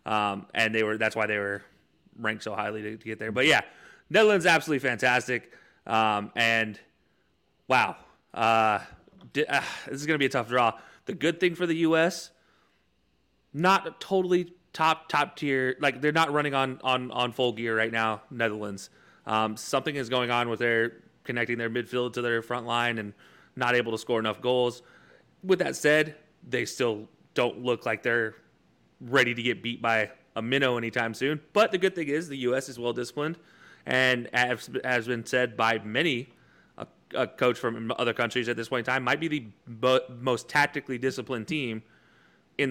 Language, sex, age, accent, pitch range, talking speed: English, male, 30-49, American, 110-140 Hz, 185 wpm